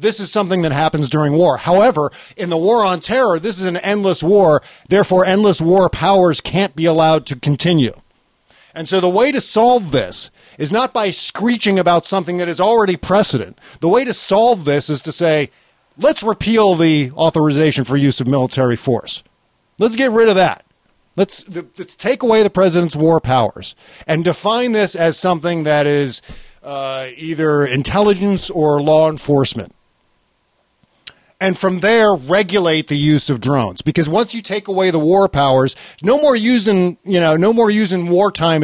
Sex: male